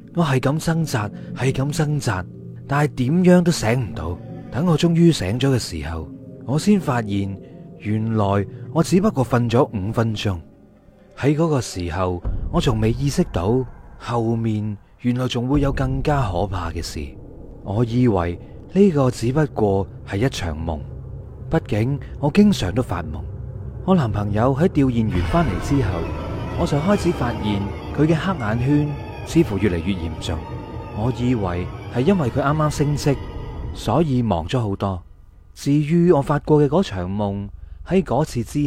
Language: Chinese